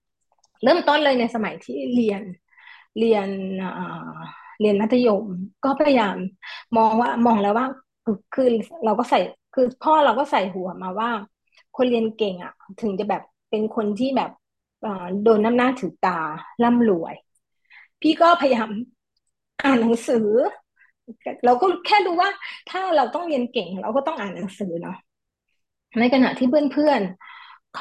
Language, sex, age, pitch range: Thai, female, 20-39, 210-275 Hz